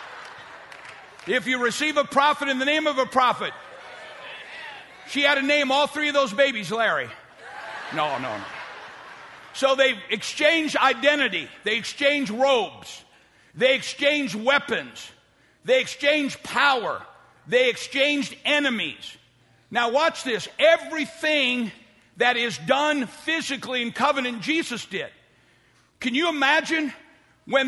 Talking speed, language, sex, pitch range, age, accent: 120 wpm, English, male, 245-300 Hz, 50-69, American